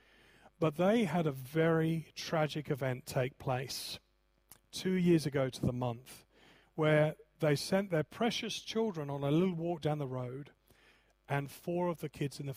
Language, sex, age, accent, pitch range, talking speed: English, male, 40-59, British, 130-155 Hz, 165 wpm